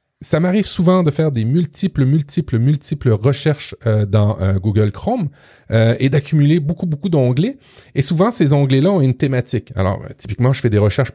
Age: 30-49